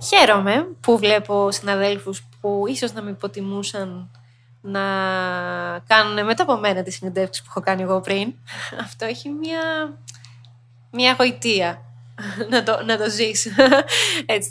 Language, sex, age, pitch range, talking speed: Greek, female, 20-39, 185-250 Hz, 130 wpm